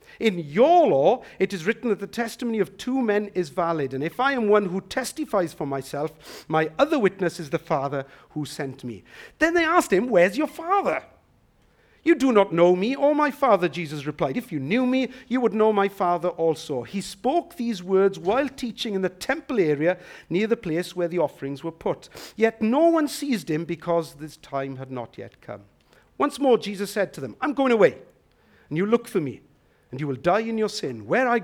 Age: 50-69